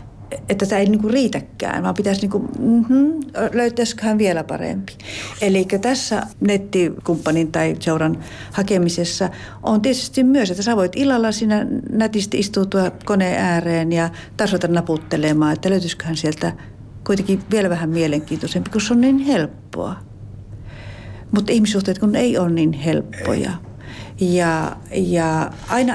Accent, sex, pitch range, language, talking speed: native, female, 155-205 Hz, Finnish, 125 wpm